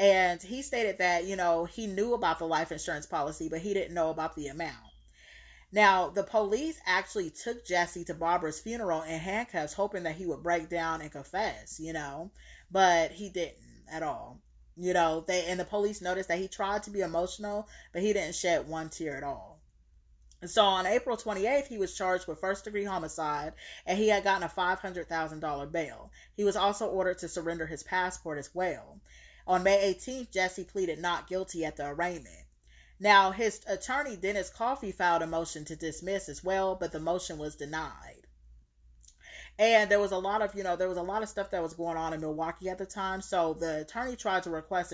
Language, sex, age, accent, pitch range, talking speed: English, female, 30-49, American, 160-200 Hz, 205 wpm